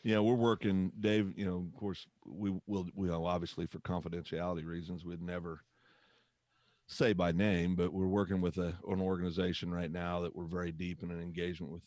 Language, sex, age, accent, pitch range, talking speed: English, male, 40-59, American, 90-105 Hz, 190 wpm